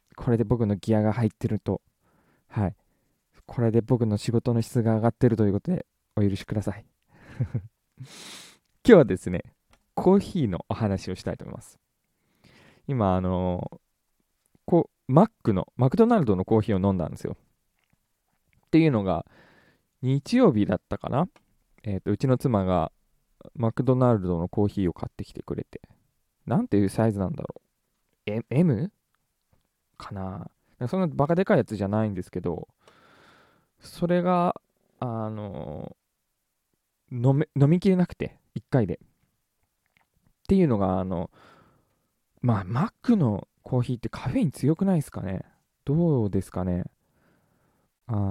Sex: male